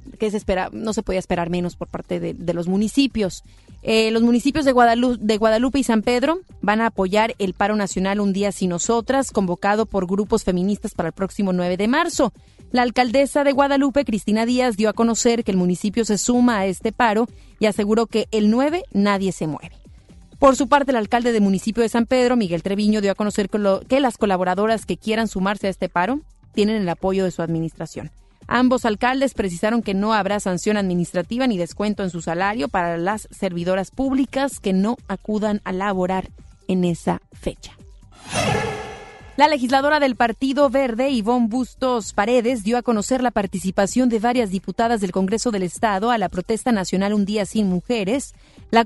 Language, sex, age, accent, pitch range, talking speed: Spanish, female, 30-49, Mexican, 190-245 Hz, 190 wpm